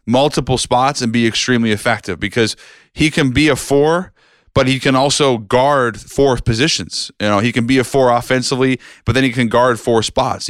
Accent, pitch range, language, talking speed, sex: American, 115-140 Hz, English, 195 wpm, male